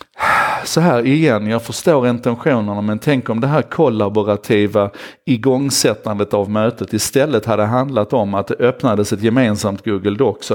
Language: Swedish